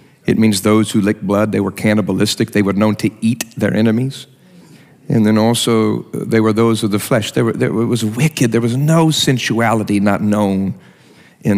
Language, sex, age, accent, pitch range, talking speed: English, male, 50-69, American, 110-145 Hz, 180 wpm